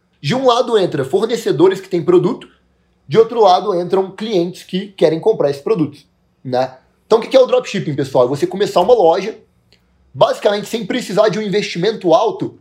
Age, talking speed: 20-39, 180 wpm